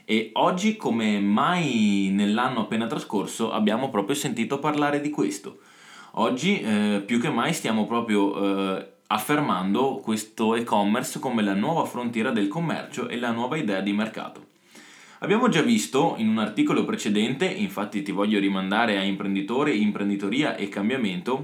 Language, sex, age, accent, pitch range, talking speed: Italian, male, 20-39, native, 100-150 Hz, 145 wpm